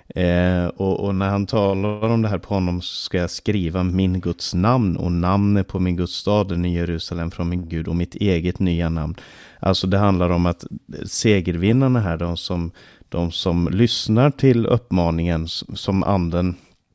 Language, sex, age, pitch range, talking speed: Swedish, male, 30-49, 90-110 Hz, 175 wpm